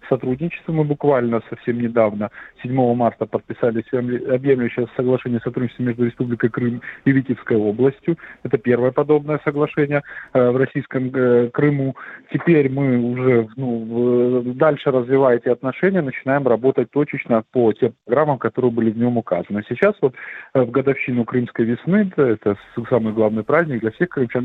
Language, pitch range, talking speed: Russian, 120-145 Hz, 140 wpm